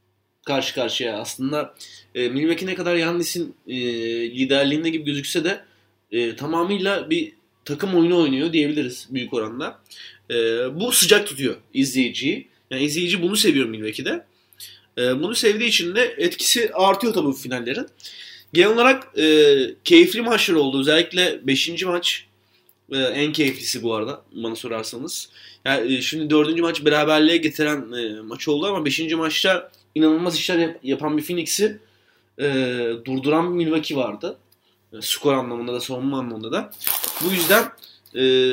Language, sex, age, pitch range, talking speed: Turkish, male, 30-49, 125-175 Hz, 145 wpm